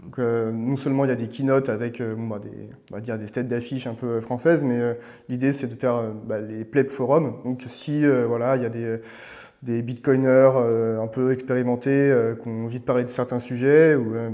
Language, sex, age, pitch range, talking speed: French, male, 30-49, 115-130 Hz, 245 wpm